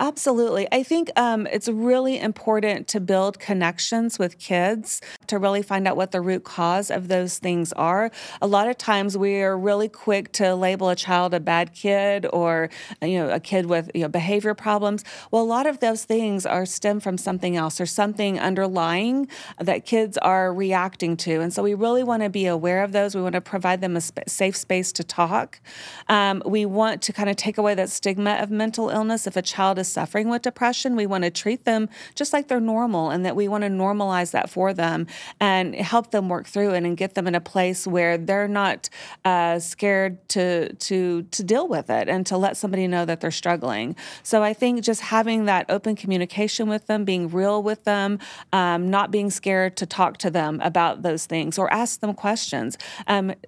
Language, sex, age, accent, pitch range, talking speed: English, female, 40-59, American, 180-215 Hz, 210 wpm